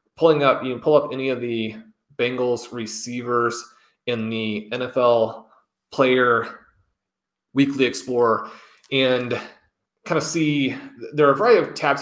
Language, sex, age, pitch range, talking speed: English, male, 30-49, 120-145 Hz, 135 wpm